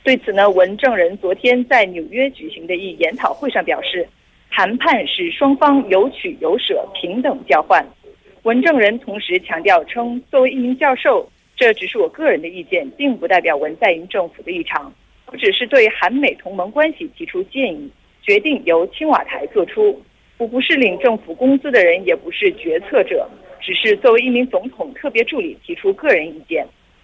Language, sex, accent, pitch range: Korean, female, Chinese, 235-365 Hz